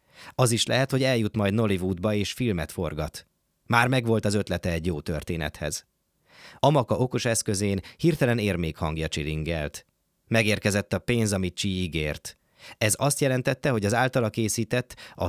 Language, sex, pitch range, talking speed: Hungarian, male, 90-120 Hz, 150 wpm